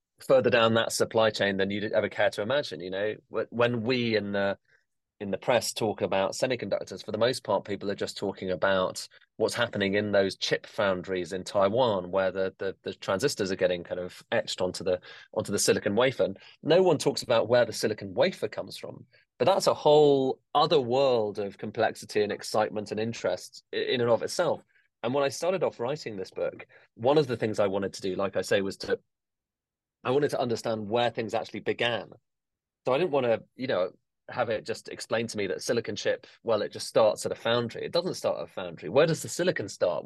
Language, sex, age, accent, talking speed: English, male, 30-49, British, 215 wpm